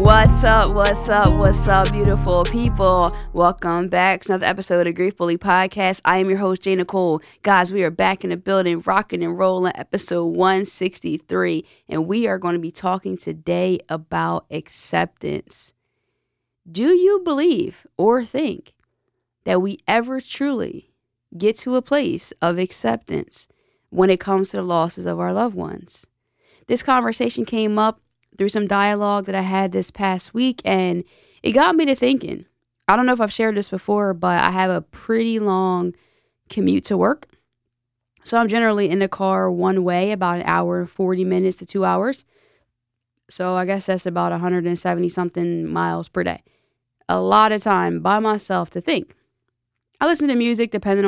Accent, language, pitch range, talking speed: American, English, 175-210 Hz, 170 wpm